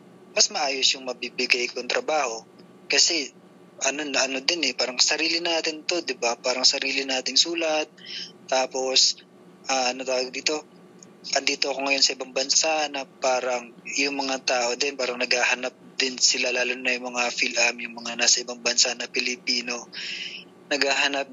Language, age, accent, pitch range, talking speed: English, 20-39, Filipino, 125-160 Hz, 155 wpm